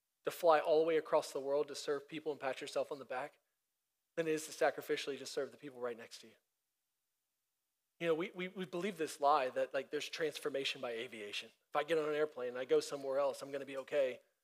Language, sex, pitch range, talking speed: English, male, 155-255 Hz, 245 wpm